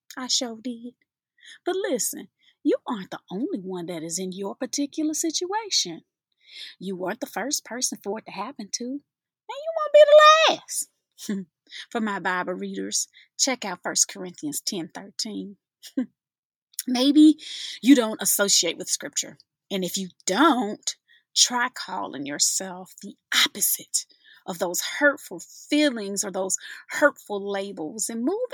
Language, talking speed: English, 140 wpm